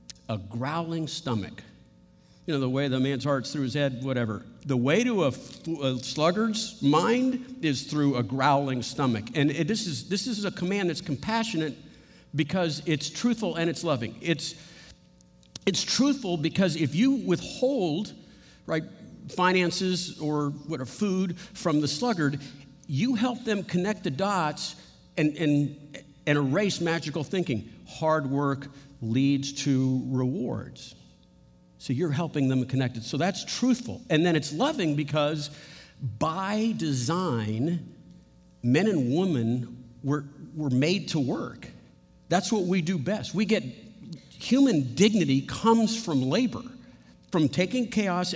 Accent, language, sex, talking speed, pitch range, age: American, English, male, 140 wpm, 135-185 Hz, 50-69